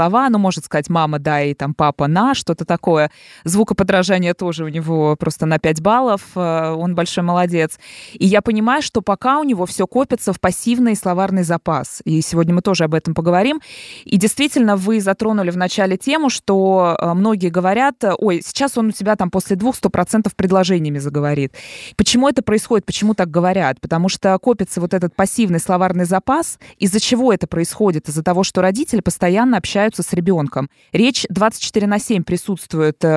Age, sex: 20-39, female